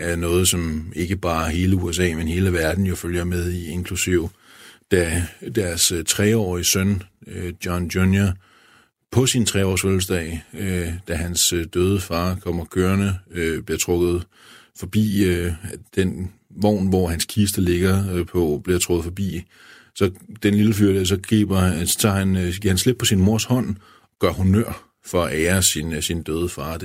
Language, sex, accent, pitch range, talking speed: Danish, male, native, 85-100 Hz, 160 wpm